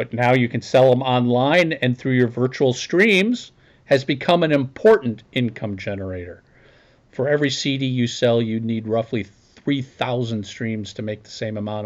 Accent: American